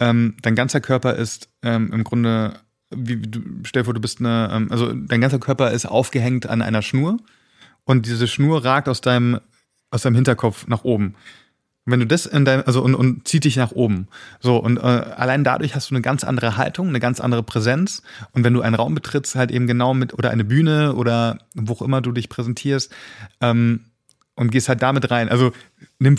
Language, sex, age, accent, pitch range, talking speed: German, male, 30-49, German, 120-140 Hz, 215 wpm